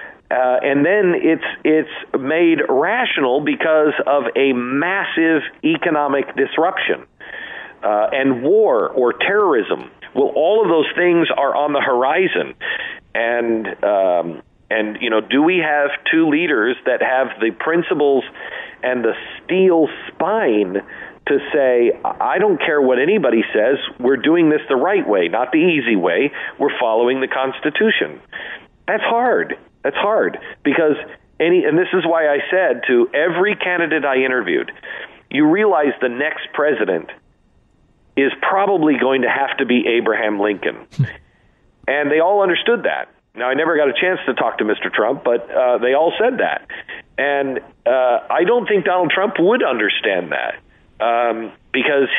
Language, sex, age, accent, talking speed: English, male, 50-69, American, 150 wpm